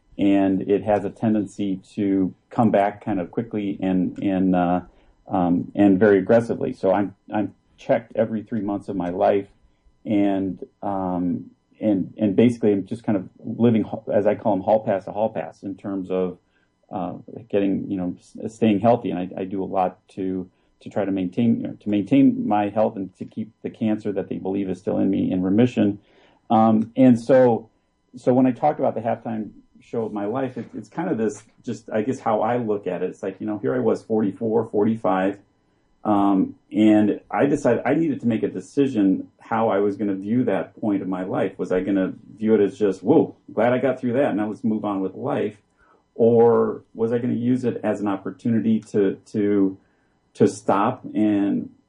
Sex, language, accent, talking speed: male, English, American, 205 wpm